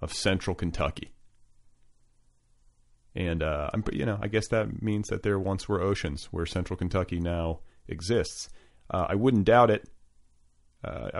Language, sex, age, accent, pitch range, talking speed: English, male, 30-49, American, 80-110 Hz, 145 wpm